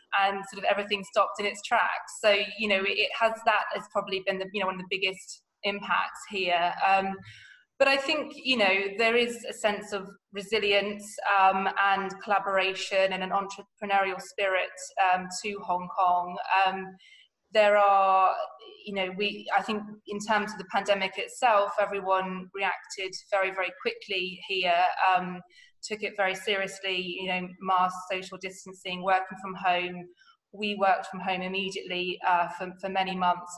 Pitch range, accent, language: 185-205 Hz, British, English